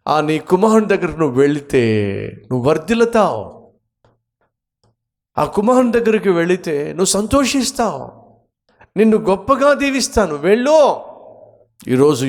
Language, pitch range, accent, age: Telugu, 115-195 Hz, native, 50-69